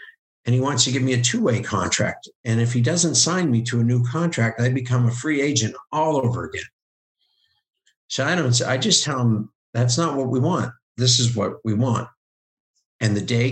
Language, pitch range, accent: English, 110-125 Hz, American